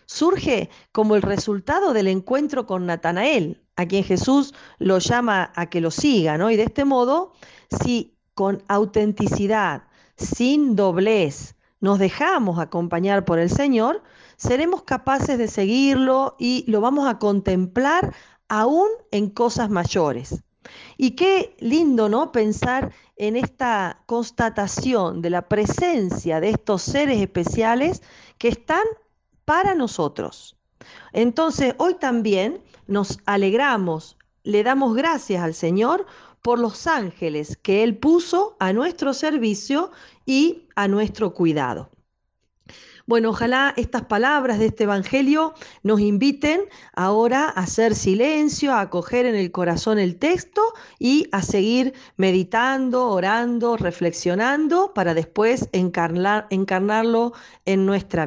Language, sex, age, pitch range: English, female, 40-59, 195-270 Hz